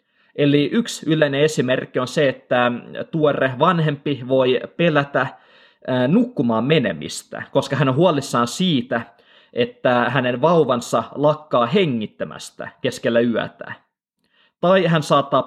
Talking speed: 110 wpm